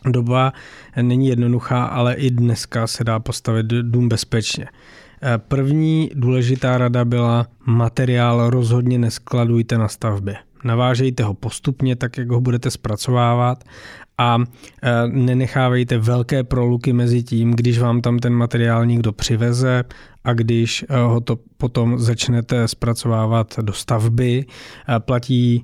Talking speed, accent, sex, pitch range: 115 wpm, native, male, 110-125 Hz